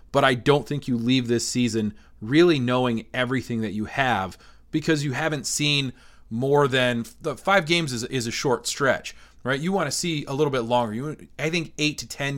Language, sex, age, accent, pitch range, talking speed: English, male, 30-49, American, 120-160 Hz, 210 wpm